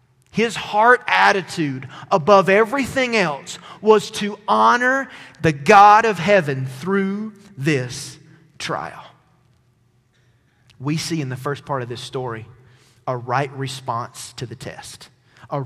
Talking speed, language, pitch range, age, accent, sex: 125 wpm, English, 140-200 Hz, 30-49, American, male